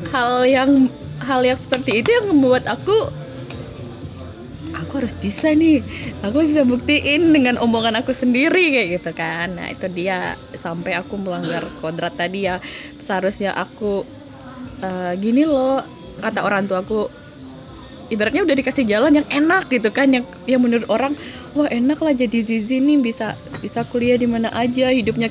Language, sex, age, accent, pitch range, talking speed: Indonesian, female, 20-39, native, 190-270 Hz, 155 wpm